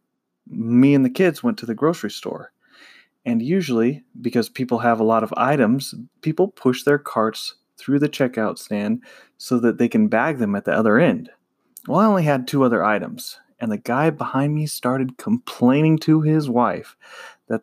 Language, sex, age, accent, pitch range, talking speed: English, male, 30-49, American, 120-170 Hz, 185 wpm